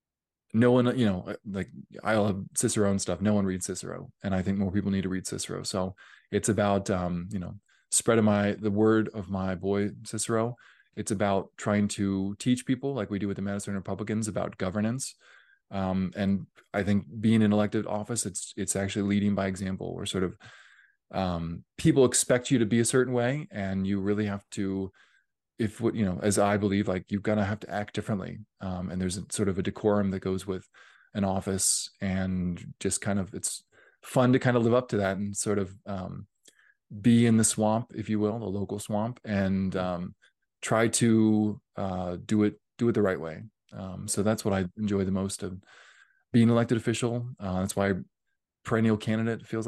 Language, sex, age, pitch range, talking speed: English, male, 20-39, 95-110 Hz, 205 wpm